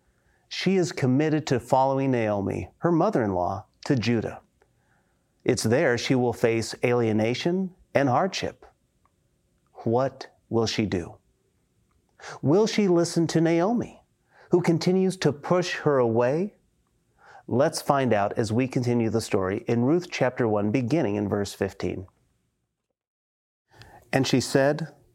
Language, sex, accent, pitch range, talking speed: English, male, American, 115-150 Hz, 125 wpm